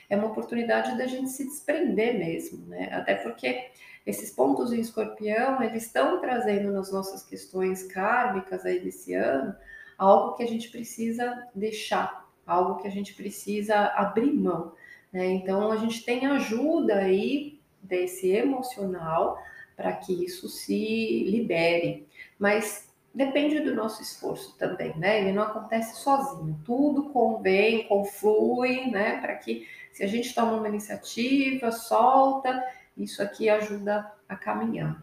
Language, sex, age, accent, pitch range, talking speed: Portuguese, female, 30-49, Brazilian, 180-235 Hz, 140 wpm